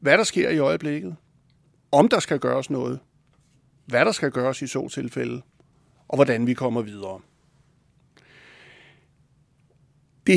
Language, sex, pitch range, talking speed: Danish, male, 125-155 Hz, 135 wpm